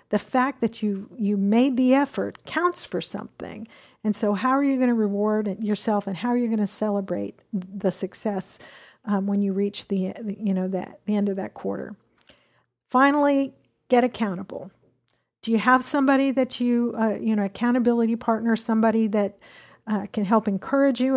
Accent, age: American, 50-69